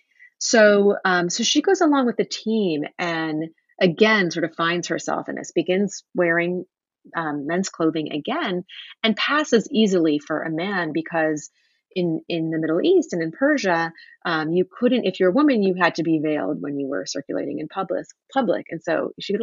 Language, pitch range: English, 165-220 Hz